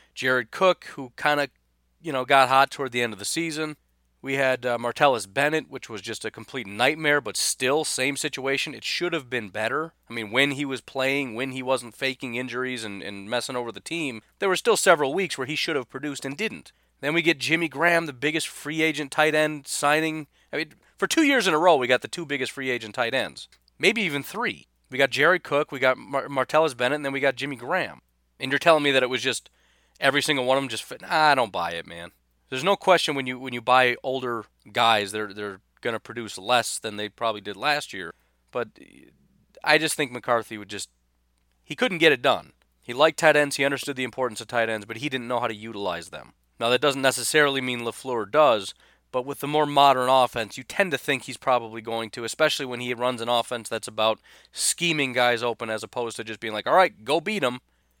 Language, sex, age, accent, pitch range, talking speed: English, male, 30-49, American, 115-150 Hz, 235 wpm